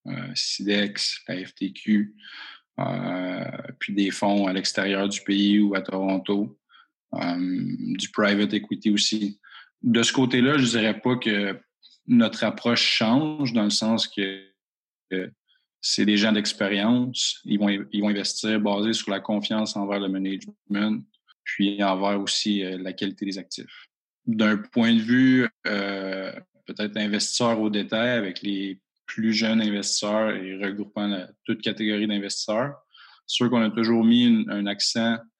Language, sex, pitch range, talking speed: French, male, 100-110 Hz, 150 wpm